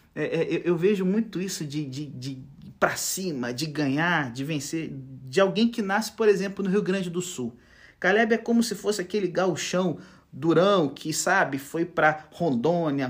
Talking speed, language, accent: 185 wpm, Portuguese, Brazilian